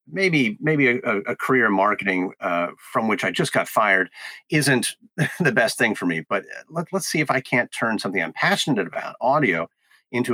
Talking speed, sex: 195 wpm, male